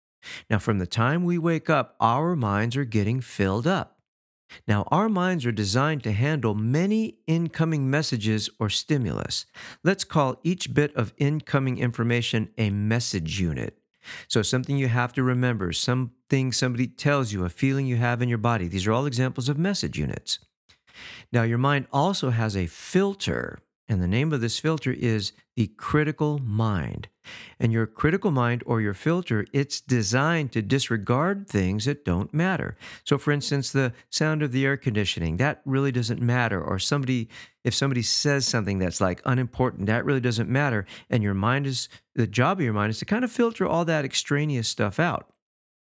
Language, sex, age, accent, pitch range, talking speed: English, male, 50-69, American, 110-145 Hz, 180 wpm